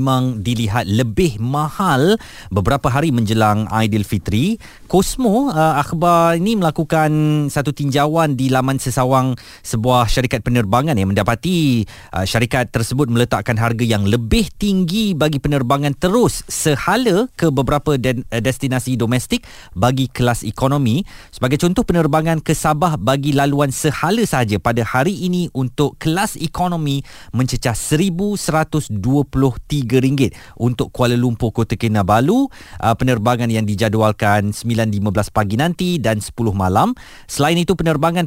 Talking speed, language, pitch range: 125 wpm, Malay, 115-155 Hz